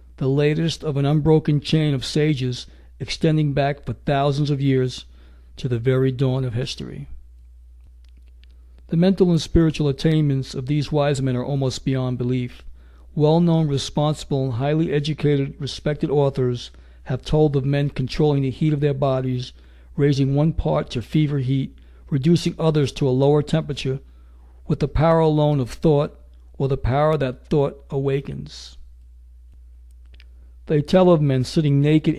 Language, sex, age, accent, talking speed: English, male, 60-79, American, 150 wpm